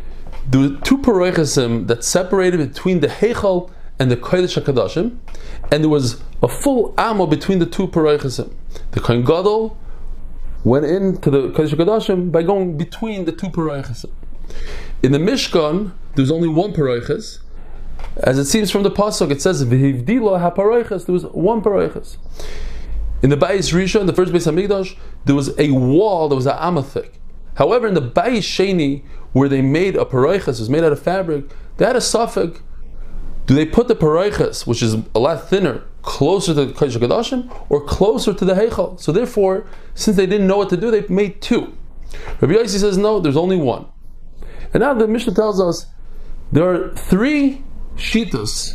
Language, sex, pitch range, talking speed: English, male, 135-195 Hz, 175 wpm